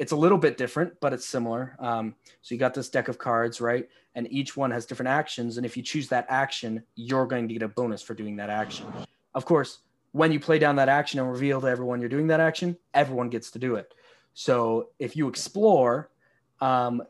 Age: 20-39